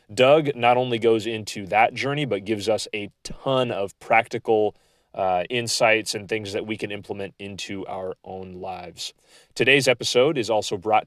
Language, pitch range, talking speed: English, 95-115 Hz, 170 wpm